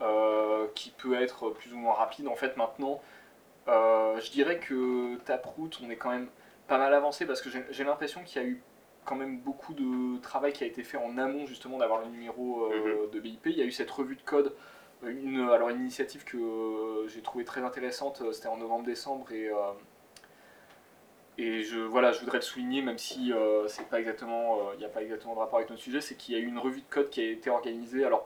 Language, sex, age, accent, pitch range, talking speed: French, male, 20-39, French, 110-140 Hz, 225 wpm